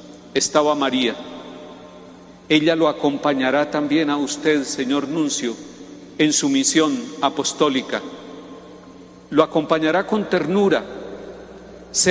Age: 50-69